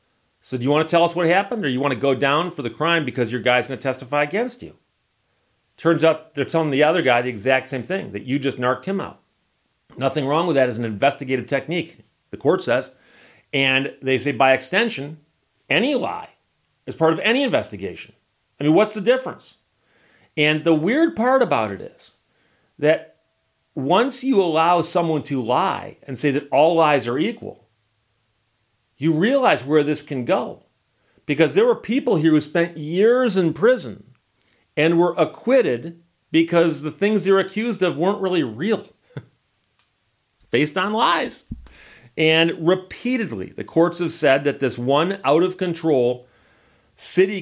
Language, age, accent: English, 40-59, American